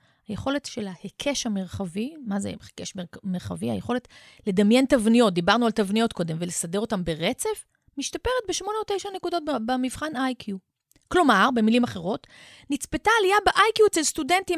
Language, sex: Hebrew, female